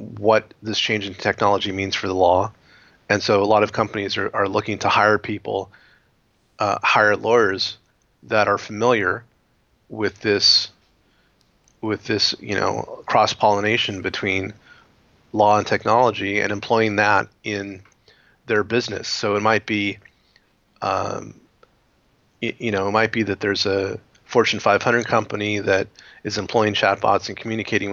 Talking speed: 145 wpm